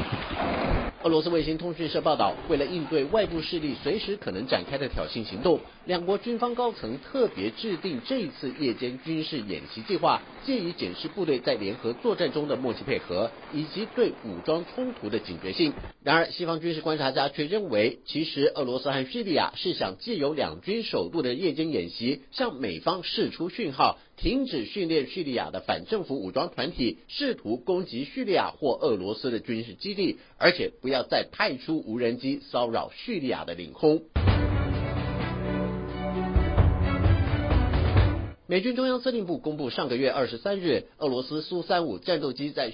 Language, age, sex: Chinese, 50-69, male